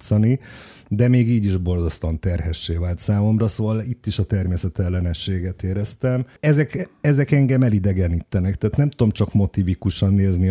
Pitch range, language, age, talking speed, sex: 95-110 Hz, Hungarian, 30-49, 135 wpm, male